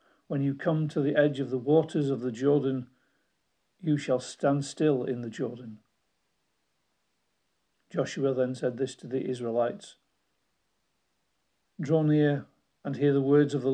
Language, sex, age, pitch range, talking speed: English, male, 50-69, 130-150 Hz, 150 wpm